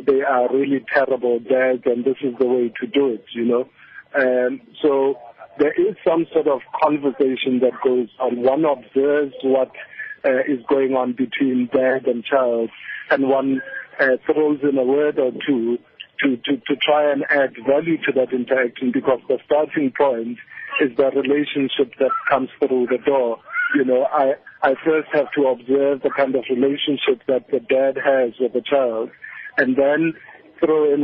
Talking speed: 175 wpm